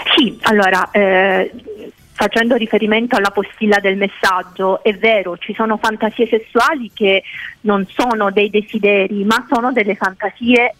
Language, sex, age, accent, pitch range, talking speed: Italian, female, 40-59, native, 200-245 Hz, 135 wpm